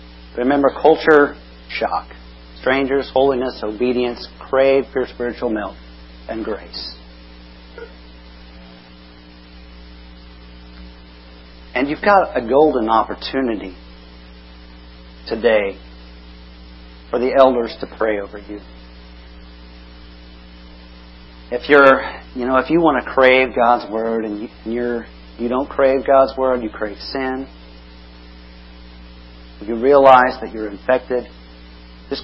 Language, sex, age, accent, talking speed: English, male, 40-59, American, 100 wpm